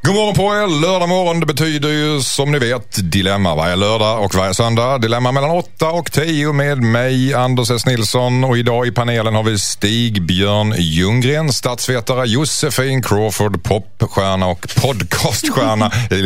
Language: Swedish